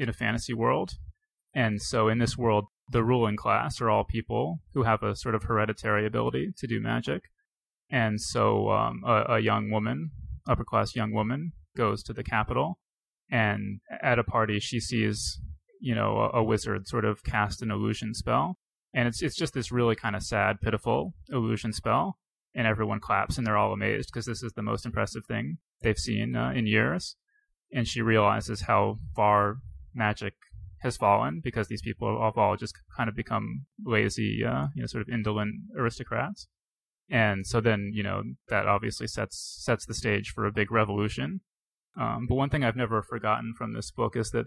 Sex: male